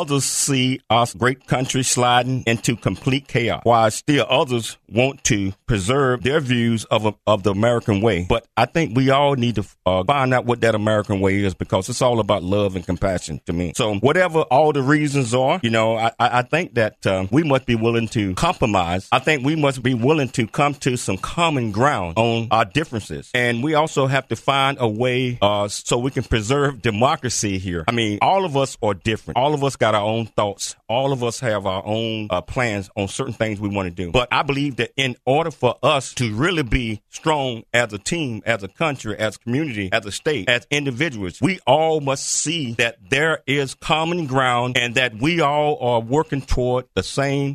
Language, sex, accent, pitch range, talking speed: English, male, American, 110-140 Hz, 215 wpm